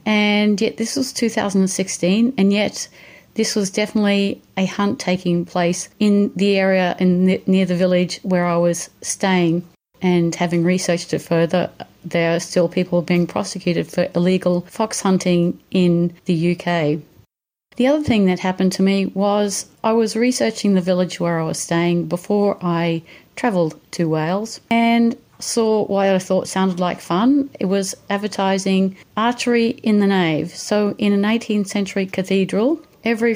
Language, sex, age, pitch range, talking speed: English, female, 40-59, 180-220 Hz, 160 wpm